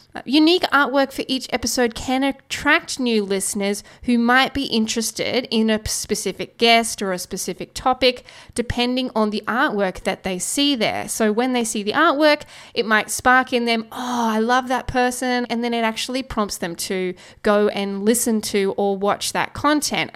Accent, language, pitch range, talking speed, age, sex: Australian, English, 210-255 Hz, 180 wpm, 10-29, female